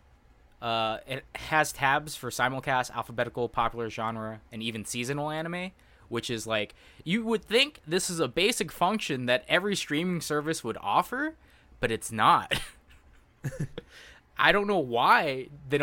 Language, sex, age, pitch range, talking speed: English, male, 20-39, 110-145 Hz, 145 wpm